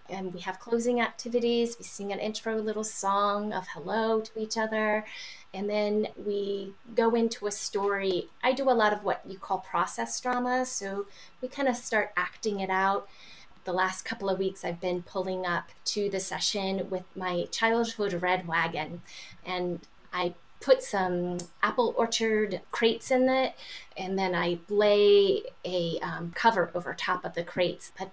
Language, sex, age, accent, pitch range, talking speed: English, female, 20-39, American, 180-225 Hz, 170 wpm